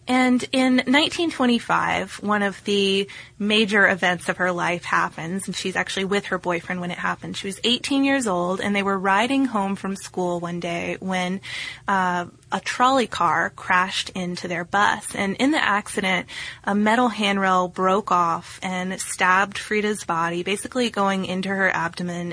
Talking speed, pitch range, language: 165 wpm, 180-205 Hz, English